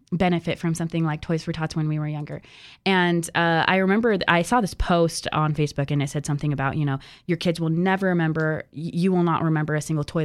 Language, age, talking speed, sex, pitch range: English, 20-39, 235 wpm, female, 155-185 Hz